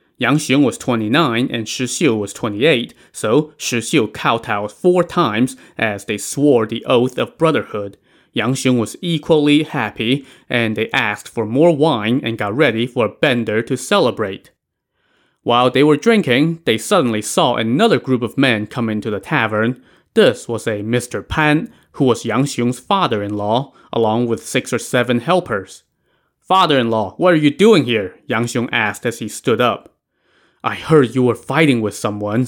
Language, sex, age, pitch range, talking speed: English, male, 20-39, 110-145 Hz, 170 wpm